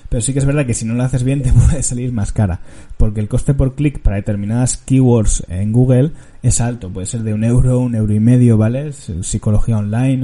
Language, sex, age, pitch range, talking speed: Spanish, male, 20-39, 110-130 Hz, 235 wpm